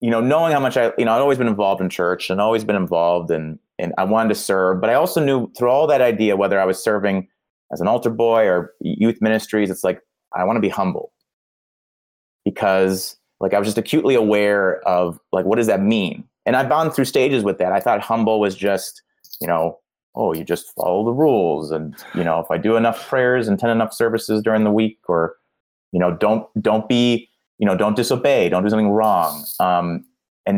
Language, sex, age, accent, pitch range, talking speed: English, male, 30-49, American, 85-115 Hz, 225 wpm